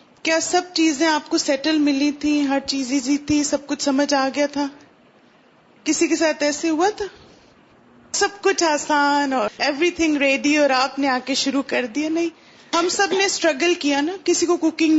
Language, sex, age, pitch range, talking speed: Urdu, female, 30-49, 275-330 Hz, 190 wpm